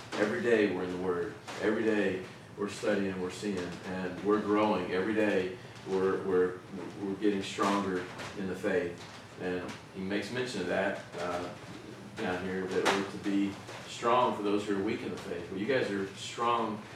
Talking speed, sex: 190 wpm, male